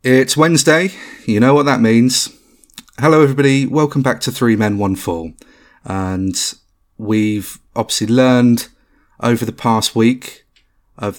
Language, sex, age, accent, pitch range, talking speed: English, male, 30-49, British, 100-130 Hz, 135 wpm